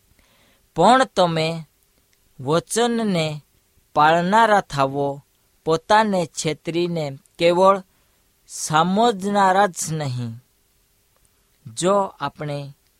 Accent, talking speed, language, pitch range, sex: native, 60 wpm, Hindi, 140-195 Hz, female